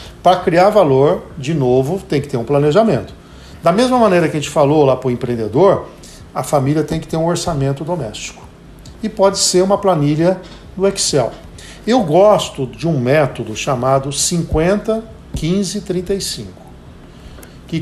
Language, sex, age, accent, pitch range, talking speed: Portuguese, male, 50-69, Brazilian, 135-190 Hz, 150 wpm